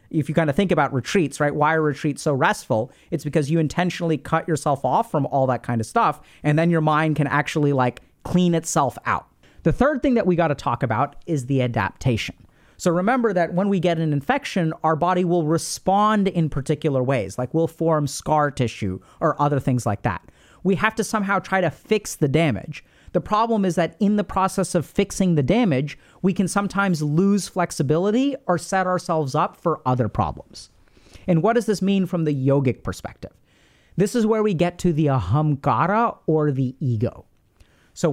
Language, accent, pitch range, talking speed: English, American, 145-195 Hz, 200 wpm